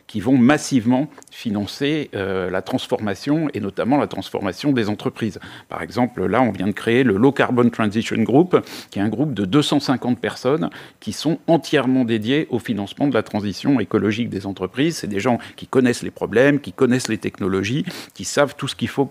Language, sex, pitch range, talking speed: French, male, 100-135 Hz, 190 wpm